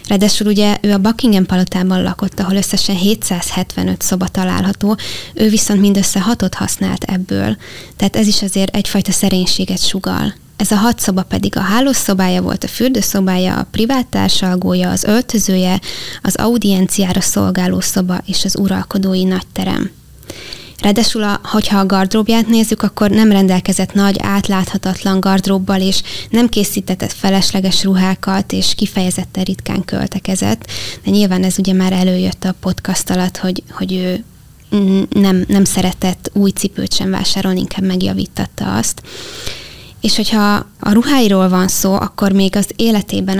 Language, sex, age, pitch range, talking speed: Hungarian, female, 20-39, 185-205 Hz, 140 wpm